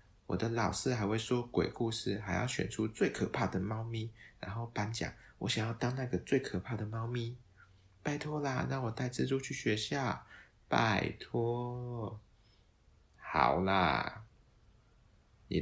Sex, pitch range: male, 95-120 Hz